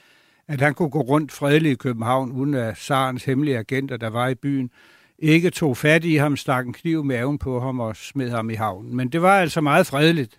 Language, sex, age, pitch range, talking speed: Danish, male, 60-79, 130-160 Hz, 230 wpm